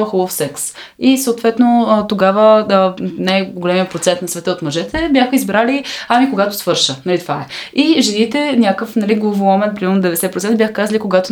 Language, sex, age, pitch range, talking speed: Bulgarian, female, 20-39, 165-195 Hz, 165 wpm